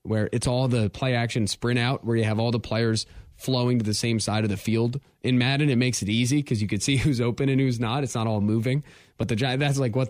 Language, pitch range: English, 110-140 Hz